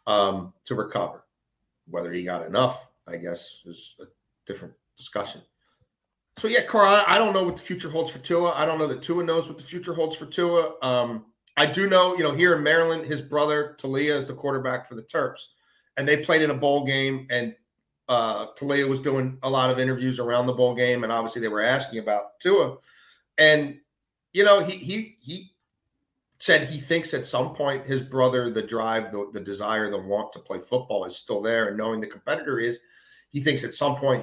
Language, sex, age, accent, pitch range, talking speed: English, male, 40-59, American, 115-150 Hz, 210 wpm